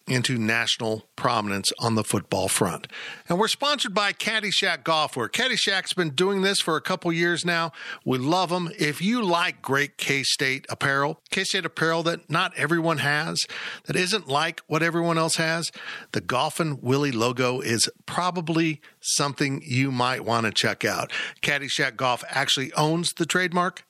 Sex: male